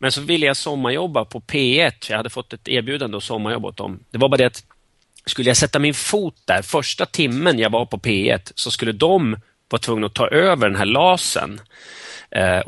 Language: Swedish